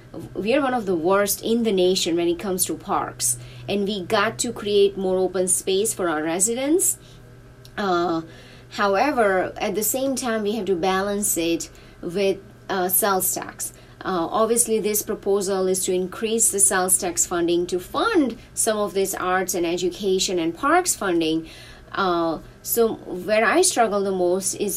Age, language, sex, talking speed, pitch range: 30-49, English, female, 170 wpm, 185-230 Hz